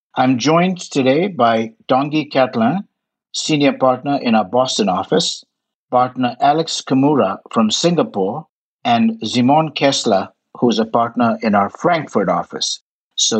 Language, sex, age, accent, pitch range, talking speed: English, male, 60-79, Indian, 120-155 Hz, 130 wpm